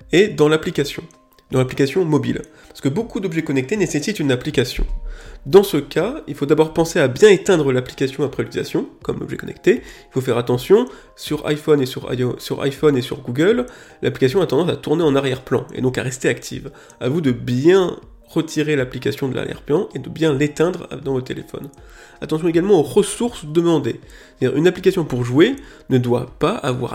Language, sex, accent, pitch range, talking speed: French, male, French, 130-160 Hz, 185 wpm